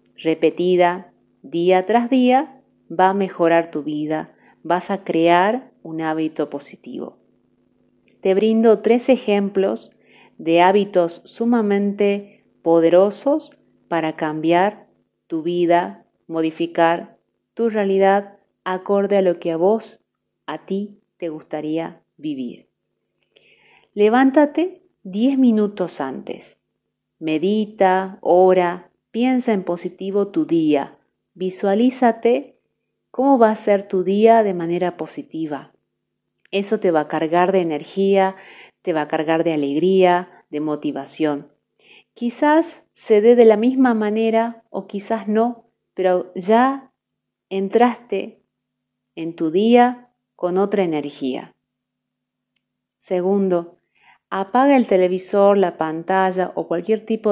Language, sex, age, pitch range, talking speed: Spanish, female, 40-59, 170-225 Hz, 110 wpm